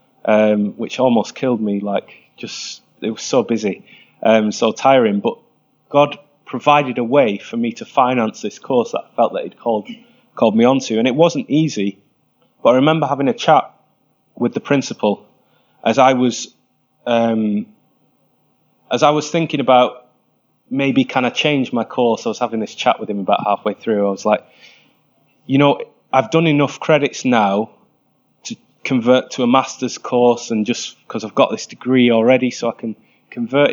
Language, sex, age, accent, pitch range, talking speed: English, male, 20-39, British, 110-140 Hz, 175 wpm